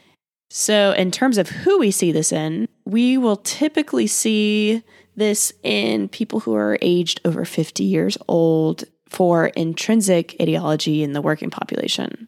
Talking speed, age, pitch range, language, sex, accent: 145 wpm, 20-39, 160-215 Hz, English, female, American